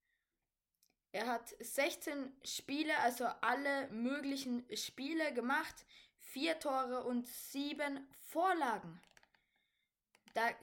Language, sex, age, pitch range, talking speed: German, female, 20-39, 215-265 Hz, 85 wpm